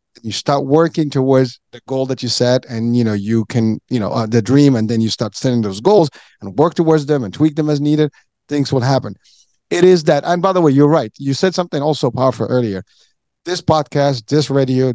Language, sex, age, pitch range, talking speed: English, male, 50-69, 115-150 Hz, 230 wpm